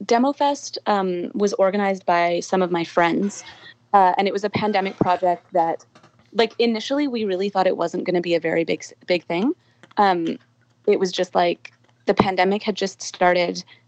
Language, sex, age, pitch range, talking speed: English, female, 30-49, 160-190 Hz, 185 wpm